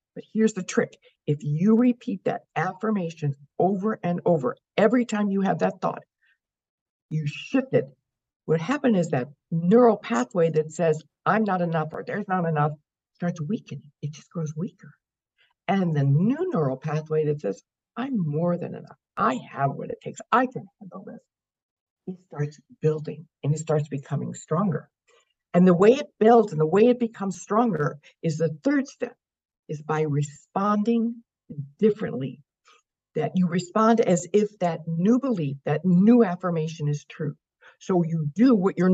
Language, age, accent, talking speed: English, 60-79, American, 165 wpm